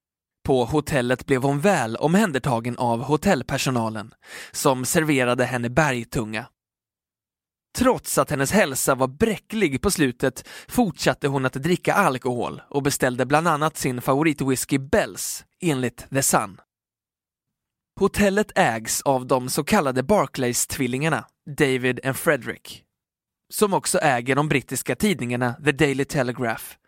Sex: male